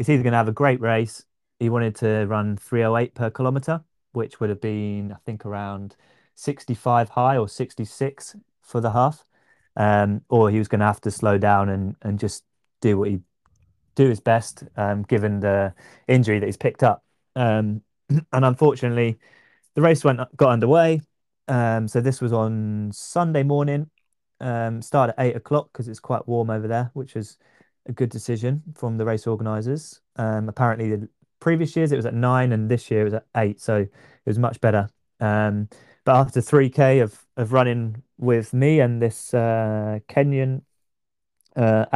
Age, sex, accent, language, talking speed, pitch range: 20-39, male, British, English, 180 wpm, 105-130 Hz